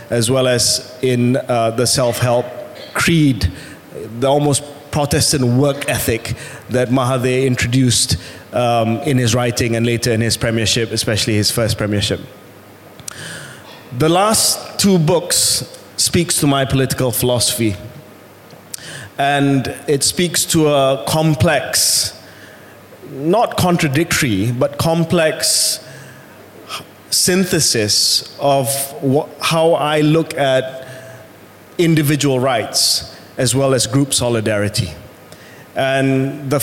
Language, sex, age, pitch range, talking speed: Malay, male, 20-39, 120-150 Hz, 105 wpm